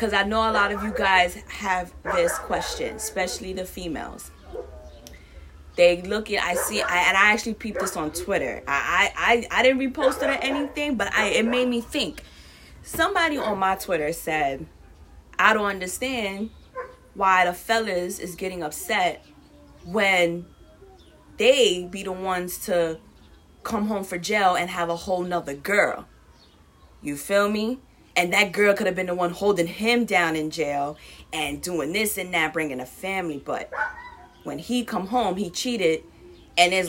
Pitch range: 175-230 Hz